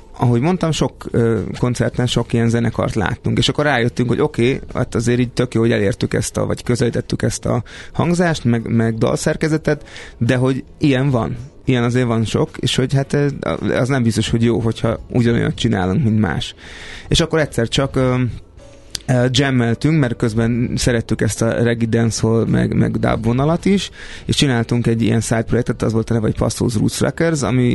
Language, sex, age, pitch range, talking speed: Hungarian, male, 30-49, 115-140 Hz, 185 wpm